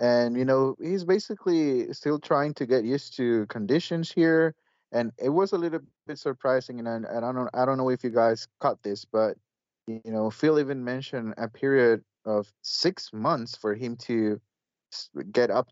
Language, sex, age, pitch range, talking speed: English, male, 30-49, 115-140 Hz, 180 wpm